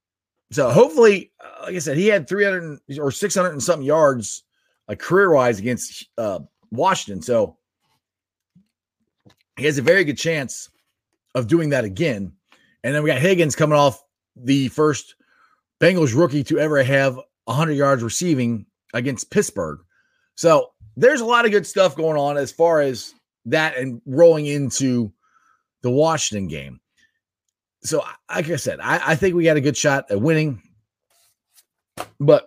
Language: English